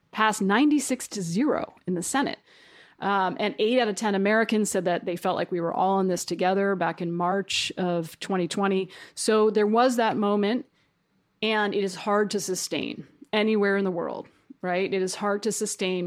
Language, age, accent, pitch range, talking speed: English, 30-49, American, 185-230 Hz, 190 wpm